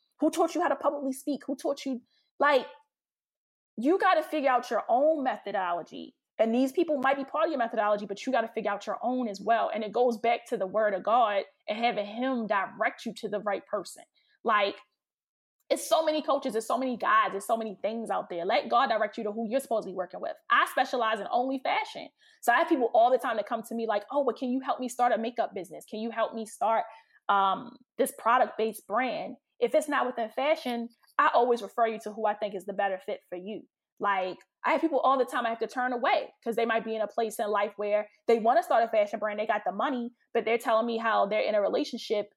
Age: 20-39